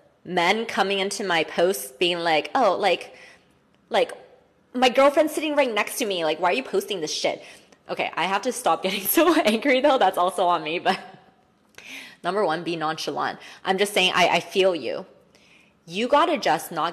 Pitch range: 165-210 Hz